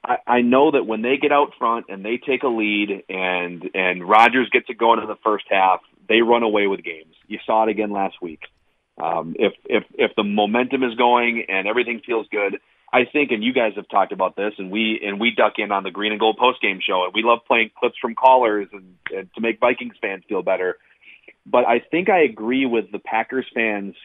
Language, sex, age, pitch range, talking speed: English, male, 30-49, 100-125 Hz, 230 wpm